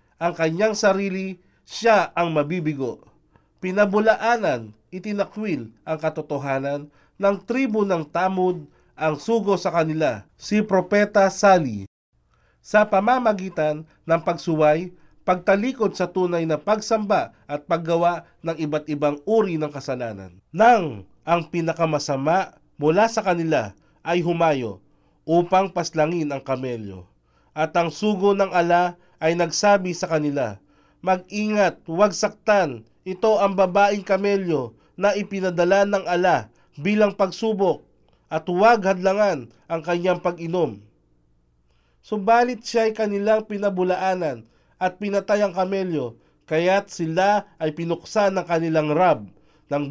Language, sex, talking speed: Filipino, male, 115 wpm